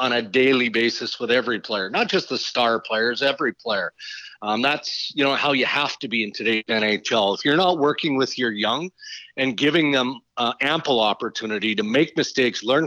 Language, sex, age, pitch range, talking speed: English, male, 40-59, 130-165 Hz, 200 wpm